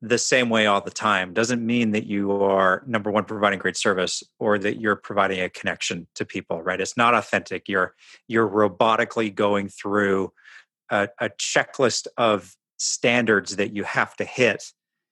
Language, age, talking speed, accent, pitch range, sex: English, 30-49, 170 wpm, American, 95-115 Hz, male